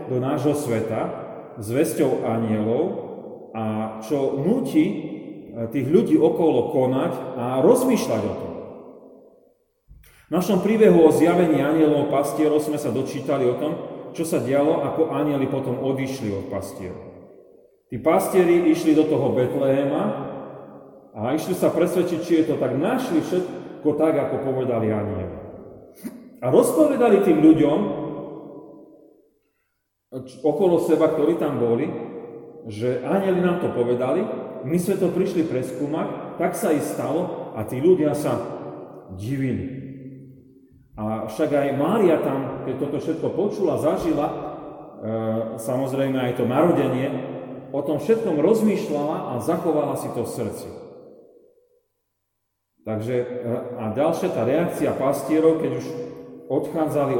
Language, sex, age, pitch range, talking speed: Slovak, male, 30-49, 120-165 Hz, 125 wpm